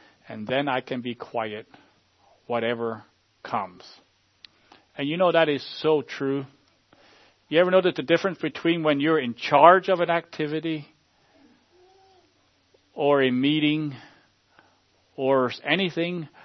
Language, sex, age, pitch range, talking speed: English, male, 40-59, 120-175 Hz, 120 wpm